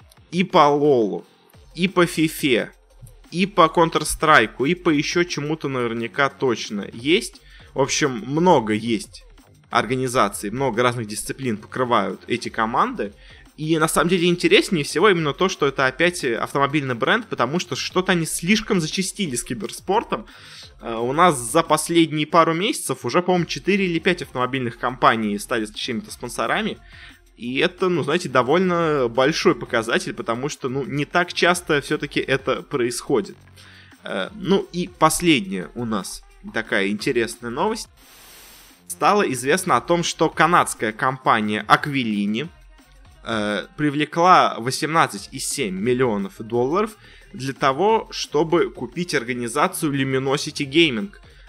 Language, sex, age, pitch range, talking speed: Russian, male, 20-39, 125-170 Hz, 130 wpm